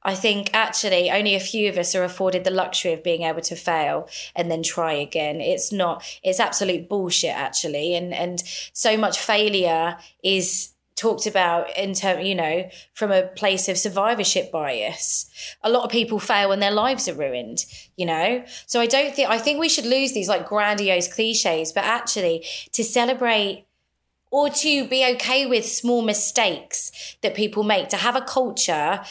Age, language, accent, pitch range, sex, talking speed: 20-39, English, British, 180-225 Hz, female, 180 wpm